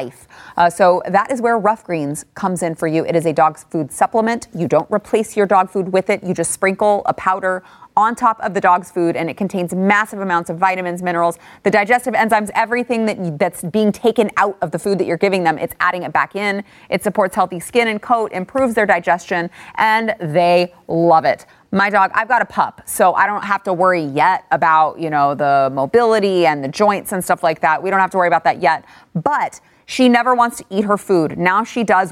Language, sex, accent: English, female, American